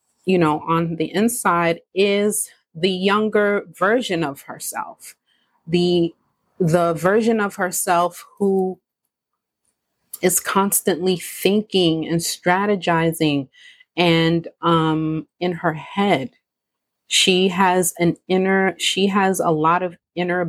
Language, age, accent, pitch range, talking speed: English, 30-49, American, 160-185 Hz, 110 wpm